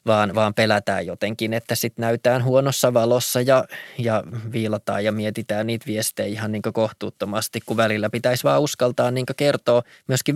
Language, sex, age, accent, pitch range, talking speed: Finnish, male, 20-39, native, 110-130 Hz, 160 wpm